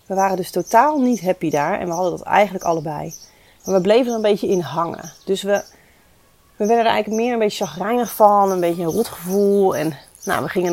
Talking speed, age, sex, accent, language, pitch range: 230 wpm, 30-49, female, Dutch, Dutch, 180-230 Hz